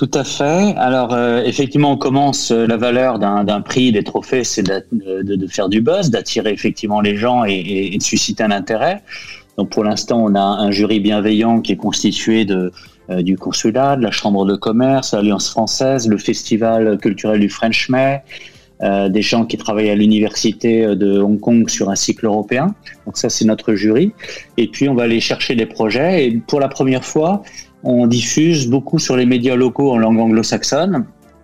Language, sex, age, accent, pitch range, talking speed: French, male, 30-49, French, 105-130 Hz, 195 wpm